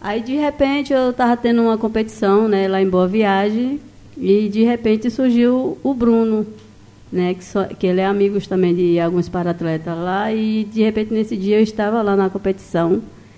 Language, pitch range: Portuguese, 180-230 Hz